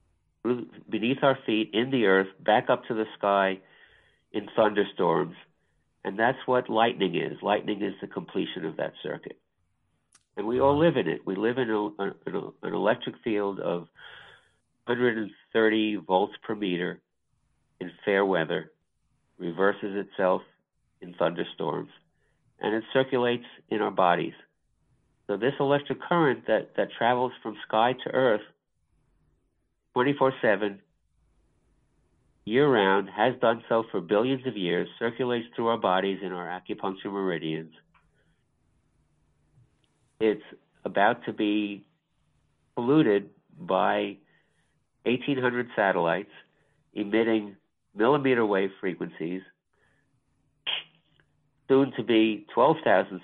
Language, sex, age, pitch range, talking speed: English, male, 50-69, 95-120 Hz, 110 wpm